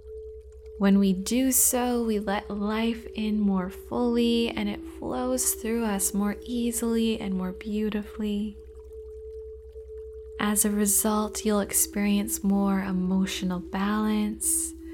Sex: female